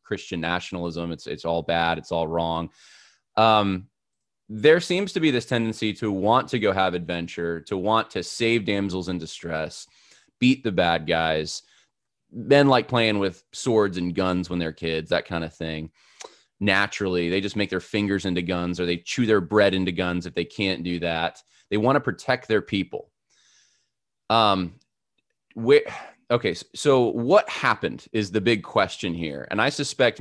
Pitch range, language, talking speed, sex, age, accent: 85-110 Hz, English, 175 wpm, male, 20-39, American